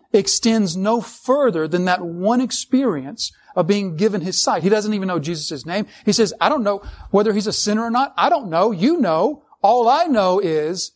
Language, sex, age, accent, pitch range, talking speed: English, male, 40-59, American, 170-220 Hz, 210 wpm